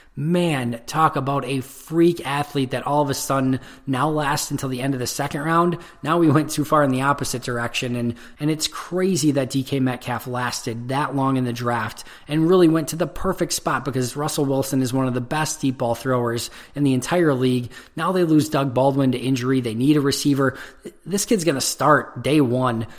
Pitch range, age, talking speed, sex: 125-145 Hz, 20-39, 210 wpm, male